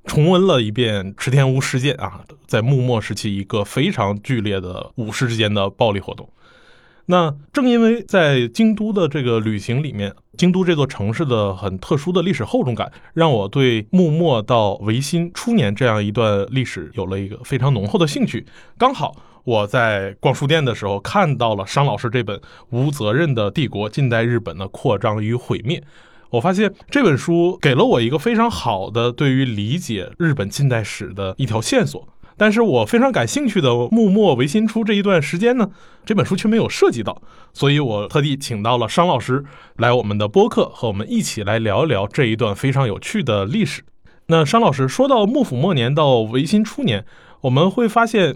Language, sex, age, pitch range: Chinese, male, 20-39, 110-175 Hz